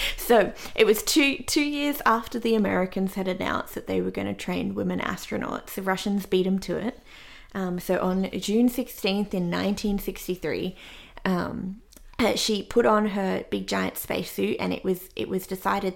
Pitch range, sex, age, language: 180-225 Hz, female, 20-39, English